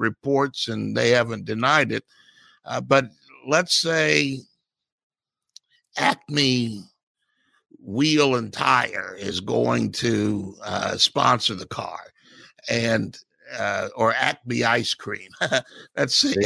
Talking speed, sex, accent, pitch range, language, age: 105 wpm, male, American, 130-160 Hz, English, 50-69